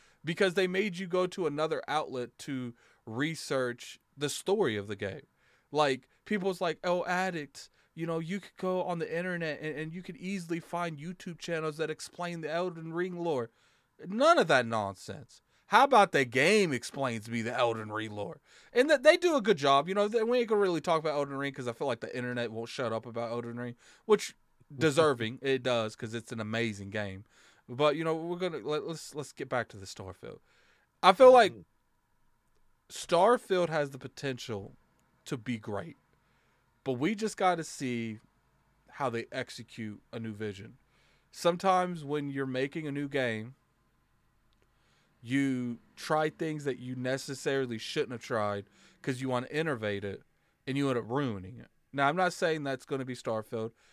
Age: 30-49